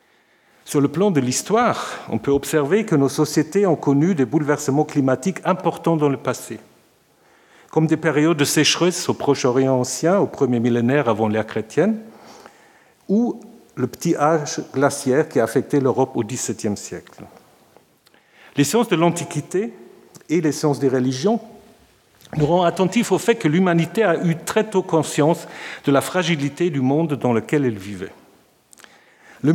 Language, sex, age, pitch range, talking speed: French, male, 50-69, 135-175 Hz, 155 wpm